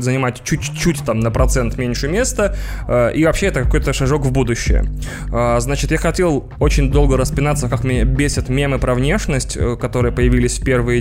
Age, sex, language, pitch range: 20-39, male, Russian, 120-145 Hz